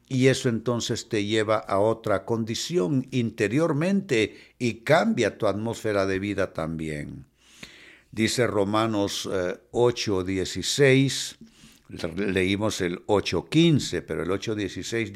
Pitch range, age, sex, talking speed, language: 95-135 Hz, 60-79, male, 100 wpm, Spanish